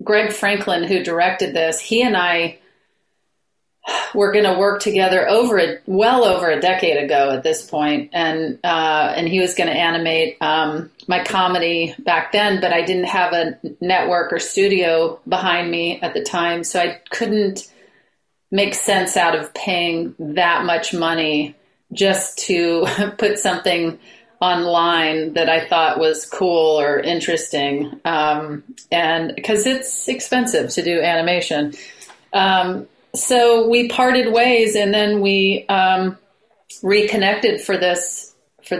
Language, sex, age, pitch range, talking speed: English, female, 40-59, 170-200 Hz, 140 wpm